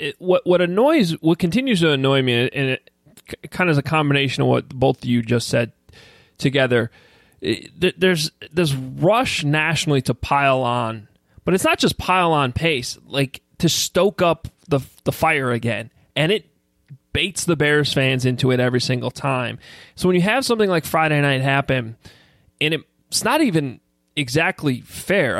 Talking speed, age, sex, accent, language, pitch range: 165 wpm, 20-39, male, American, English, 130-175 Hz